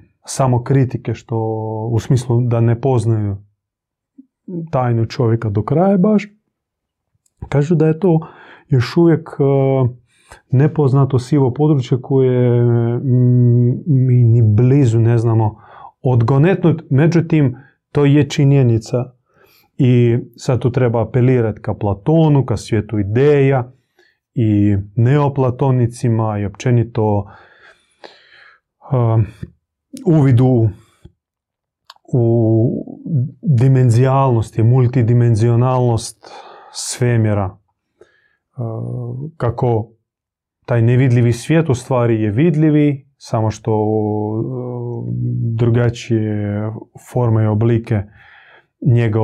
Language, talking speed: Croatian, 85 wpm